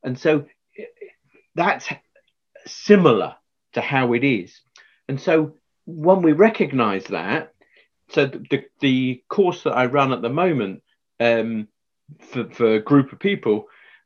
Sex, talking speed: male, 130 wpm